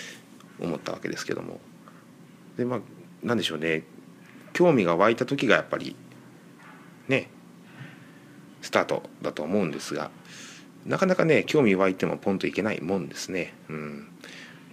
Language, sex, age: Japanese, male, 30-49